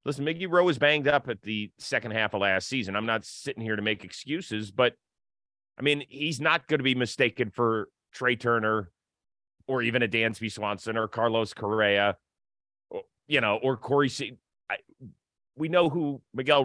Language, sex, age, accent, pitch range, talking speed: English, male, 30-49, American, 110-145 Hz, 180 wpm